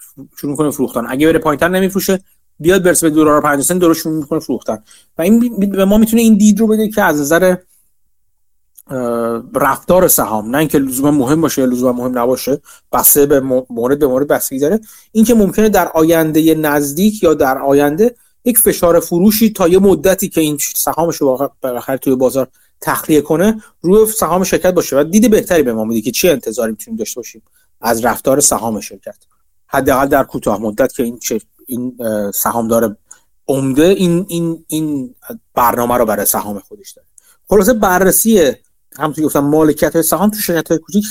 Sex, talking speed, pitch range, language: male, 180 wpm, 140-190 Hz, Persian